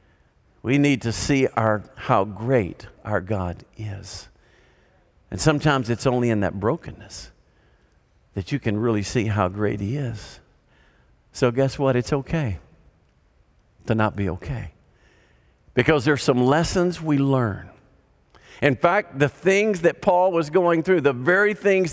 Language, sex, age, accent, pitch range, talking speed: English, male, 50-69, American, 100-145 Hz, 145 wpm